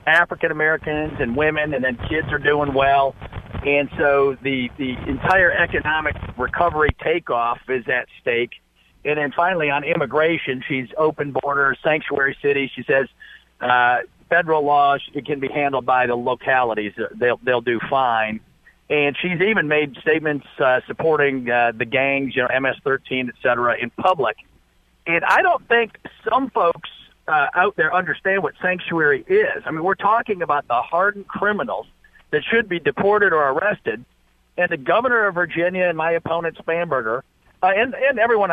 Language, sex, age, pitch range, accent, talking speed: English, male, 50-69, 135-185 Hz, American, 160 wpm